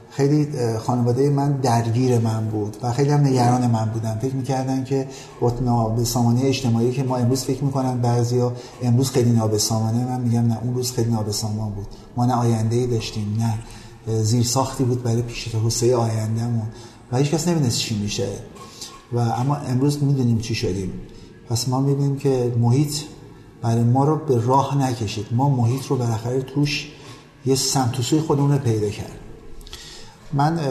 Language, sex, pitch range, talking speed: Persian, male, 115-140 Hz, 160 wpm